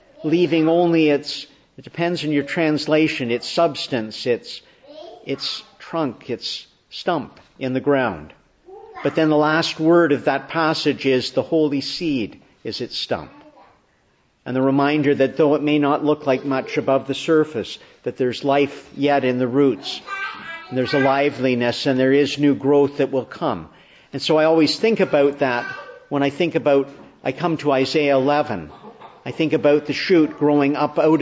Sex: male